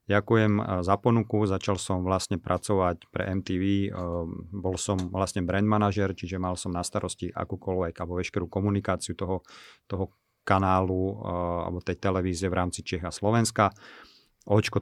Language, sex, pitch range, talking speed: Slovak, male, 90-105 Hz, 140 wpm